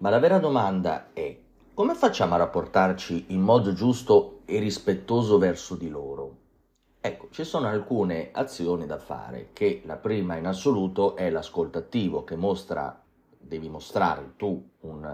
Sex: male